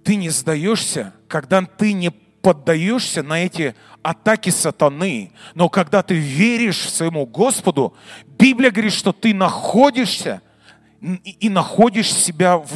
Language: Russian